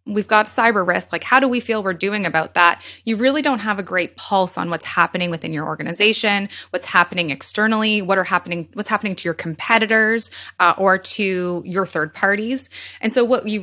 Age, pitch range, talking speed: 20-39, 175-220 Hz, 205 wpm